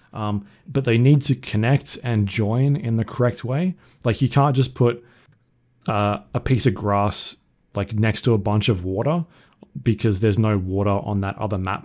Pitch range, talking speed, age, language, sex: 105-125 Hz, 185 wpm, 20-39, English, male